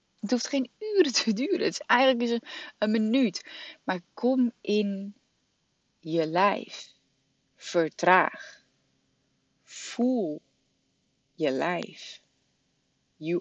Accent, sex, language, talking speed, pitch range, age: Dutch, female, Dutch, 100 wpm, 175-235 Hz, 30-49